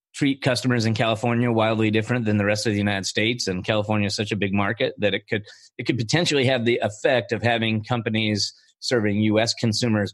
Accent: American